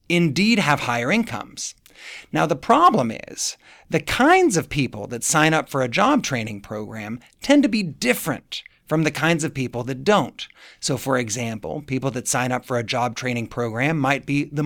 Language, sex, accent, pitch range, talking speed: English, male, American, 125-185 Hz, 190 wpm